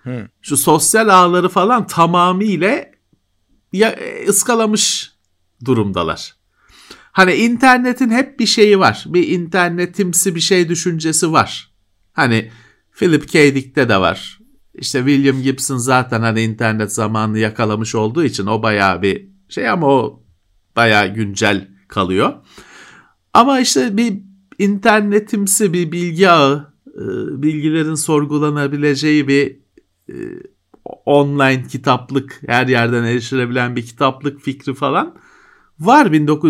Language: Turkish